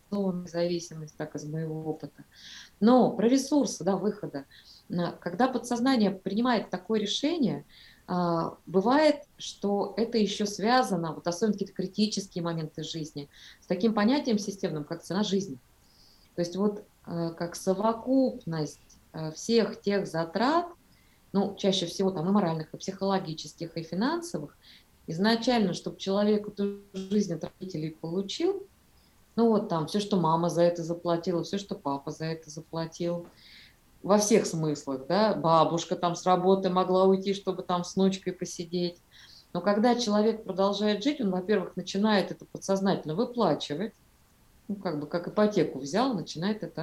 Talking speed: 140 wpm